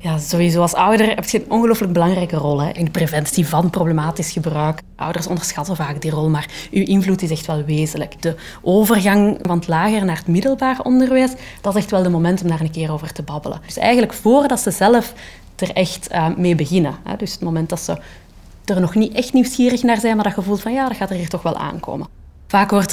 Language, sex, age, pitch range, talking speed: Dutch, female, 30-49, 165-215 Hz, 230 wpm